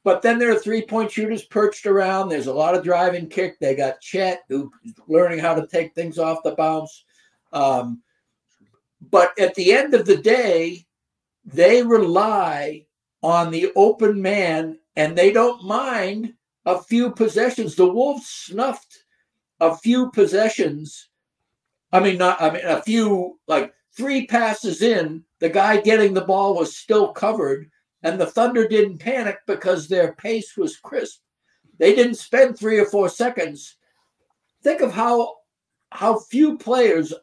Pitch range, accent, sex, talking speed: 165-235 Hz, American, male, 155 wpm